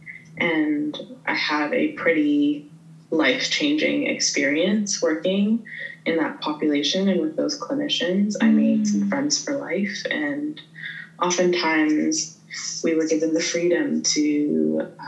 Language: English